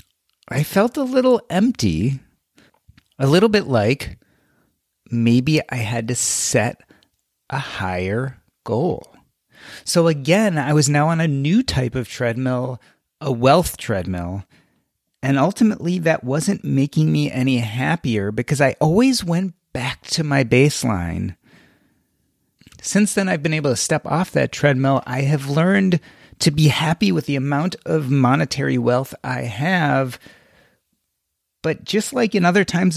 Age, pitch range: 30-49, 125-170 Hz